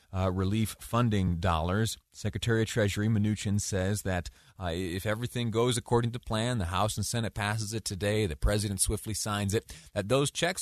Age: 30-49